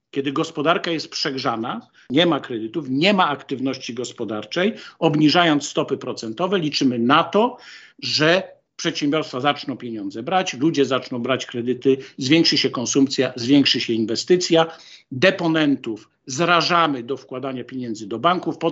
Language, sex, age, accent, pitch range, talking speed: Polish, male, 50-69, native, 130-175 Hz, 130 wpm